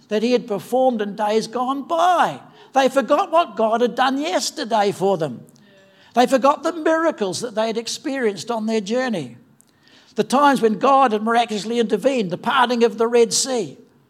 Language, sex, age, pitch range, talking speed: English, male, 60-79, 210-260 Hz, 175 wpm